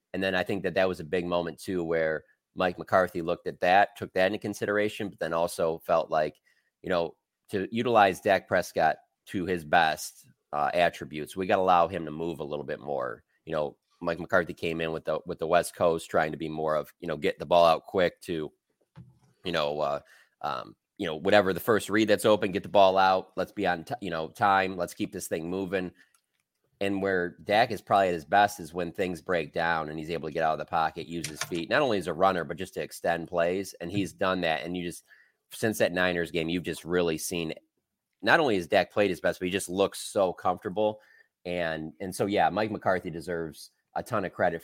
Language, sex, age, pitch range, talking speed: English, male, 30-49, 85-95 Hz, 235 wpm